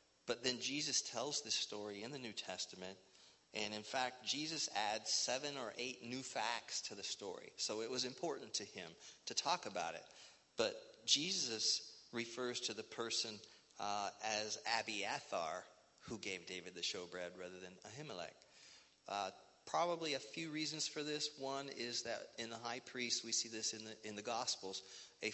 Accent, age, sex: American, 40-59, male